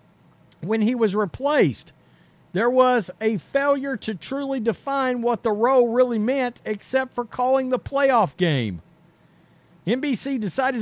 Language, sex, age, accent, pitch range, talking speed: English, male, 50-69, American, 205-250 Hz, 135 wpm